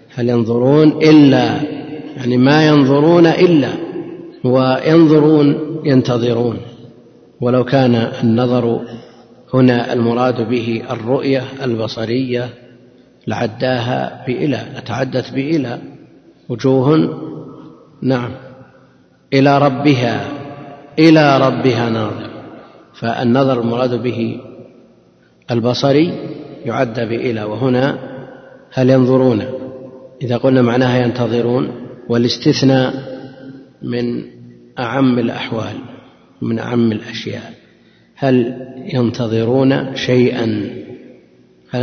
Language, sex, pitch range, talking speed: Arabic, male, 115-130 Hz, 75 wpm